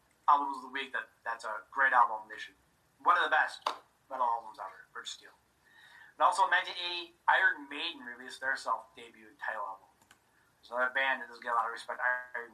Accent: American